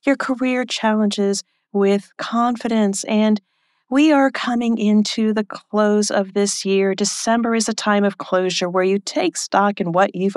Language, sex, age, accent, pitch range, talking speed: English, female, 40-59, American, 160-225 Hz, 160 wpm